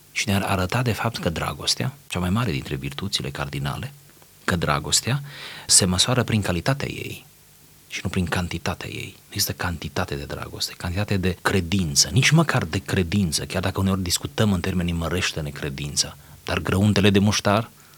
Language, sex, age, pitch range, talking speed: Romanian, male, 30-49, 90-115 Hz, 160 wpm